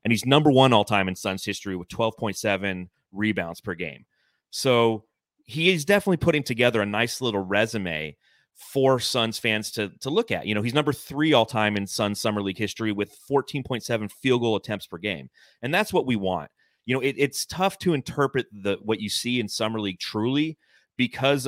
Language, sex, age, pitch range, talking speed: English, male, 30-49, 100-125 Hz, 200 wpm